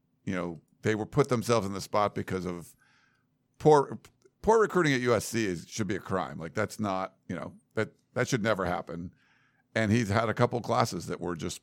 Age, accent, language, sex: 50-69, American, English, male